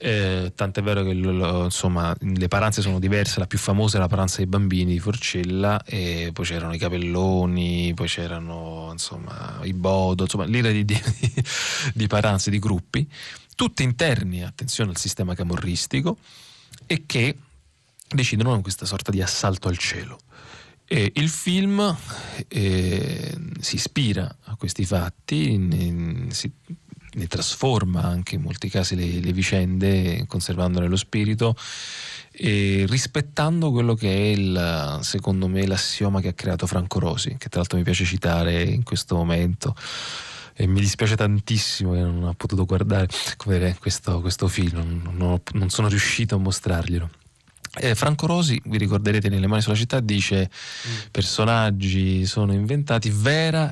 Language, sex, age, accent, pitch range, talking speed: Italian, male, 30-49, native, 90-115 Hz, 155 wpm